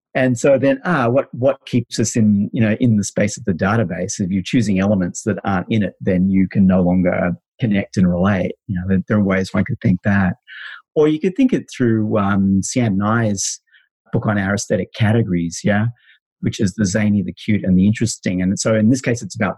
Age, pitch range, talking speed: 30-49, 95-115 Hz, 225 wpm